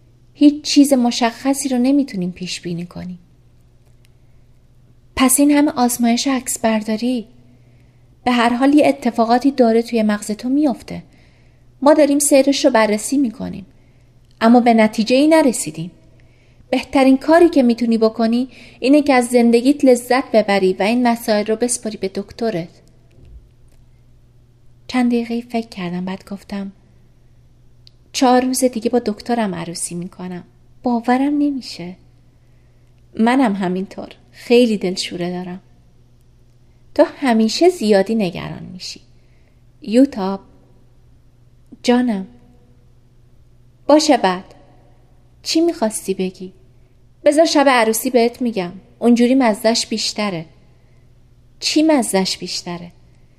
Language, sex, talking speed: Persian, female, 105 wpm